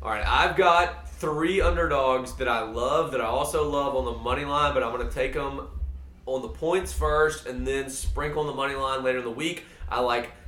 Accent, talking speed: American, 225 wpm